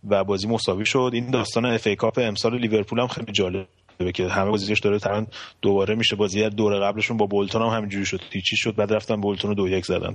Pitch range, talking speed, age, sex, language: 100-115 Hz, 220 wpm, 30-49, male, Persian